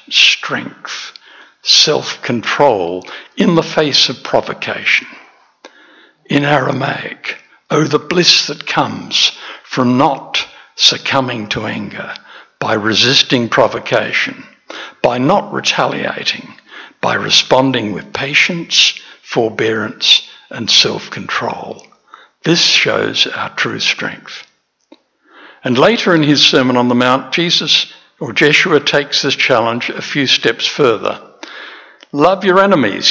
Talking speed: 105 wpm